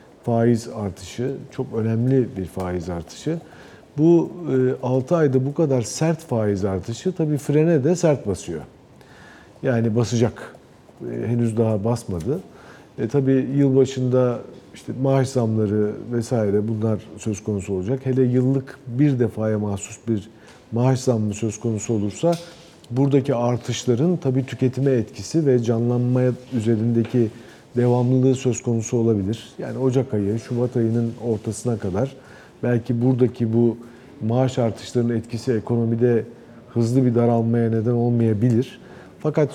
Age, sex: 50-69, male